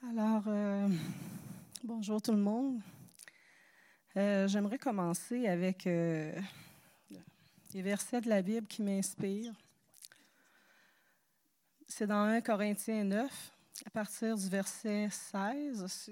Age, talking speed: 40-59, 110 wpm